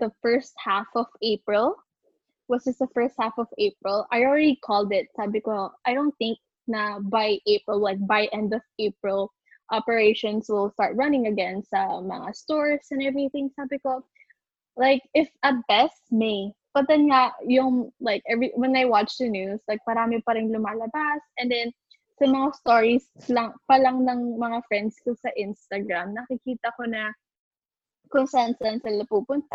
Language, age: Filipino, 10-29